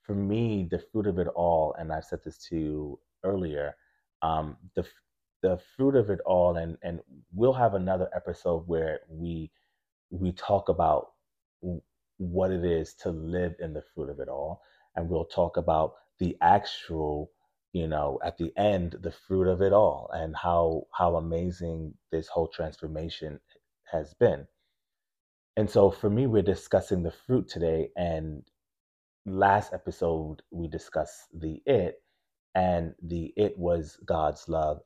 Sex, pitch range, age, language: male, 80-95 Hz, 30-49, English